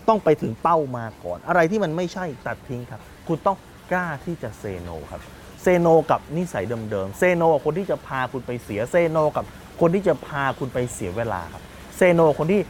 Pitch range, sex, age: 110-165 Hz, male, 20-39